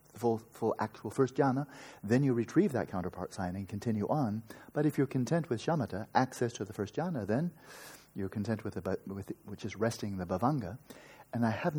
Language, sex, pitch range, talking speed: English, male, 105-135 Hz, 205 wpm